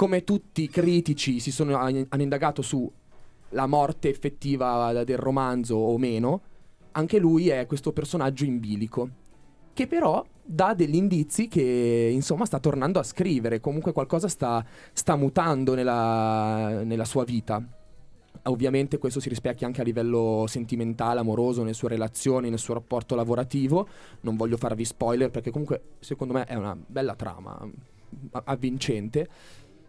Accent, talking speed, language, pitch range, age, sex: native, 140 wpm, Italian, 125-180 Hz, 20-39, male